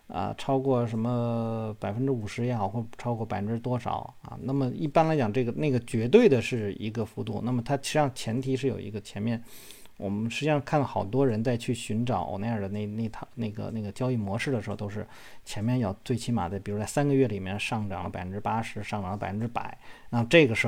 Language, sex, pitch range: Chinese, male, 105-130 Hz